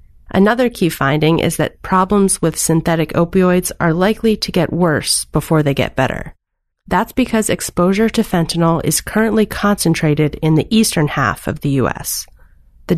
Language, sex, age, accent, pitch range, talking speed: English, female, 30-49, American, 150-200 Hz, 155 wpm